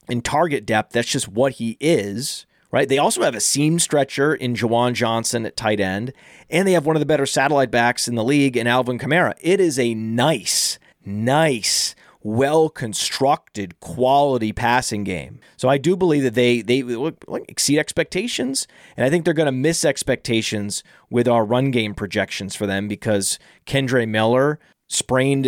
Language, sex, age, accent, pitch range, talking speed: English, male, 30-49, American, 110-140 Hz, 170 wpm